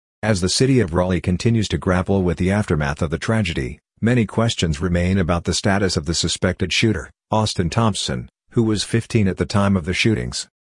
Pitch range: 90-105 Hz